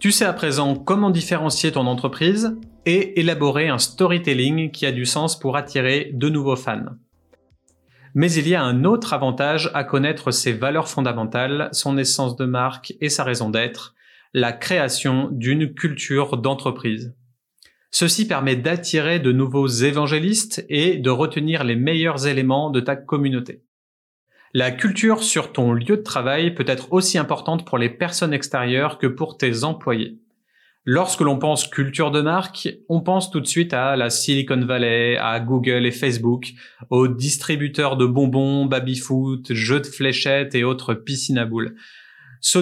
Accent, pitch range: French, 130-160 Hz